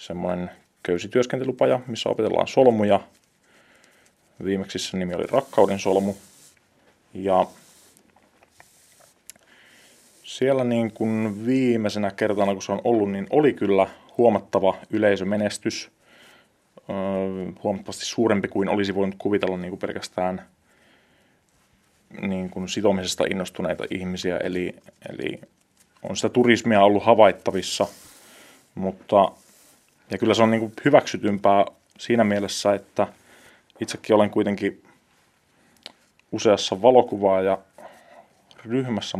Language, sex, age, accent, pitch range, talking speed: Finnish, male, 30-49, native, 95-110 Hz, 100 wpm